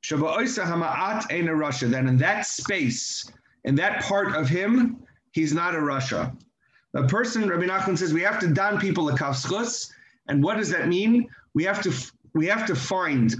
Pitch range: 135-190 Hz